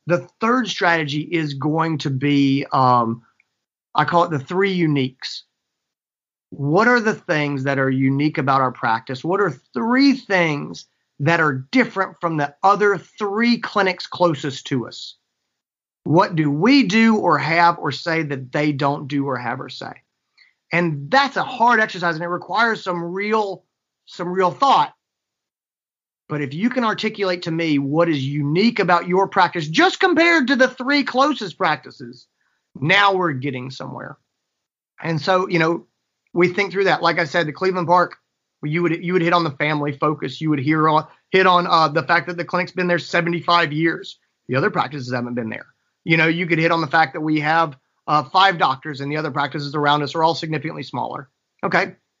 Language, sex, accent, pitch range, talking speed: English, male, American, 150-185 Hz, 185 wpm